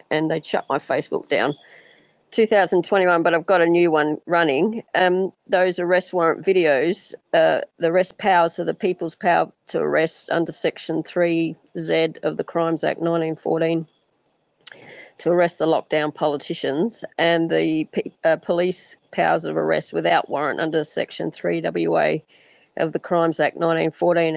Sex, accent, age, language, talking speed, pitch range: female, Australian, 40-59, English, 145 wpm, 160-185 Hz